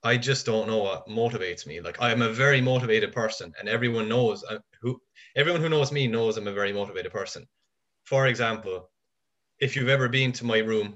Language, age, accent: English, 20-39, Irish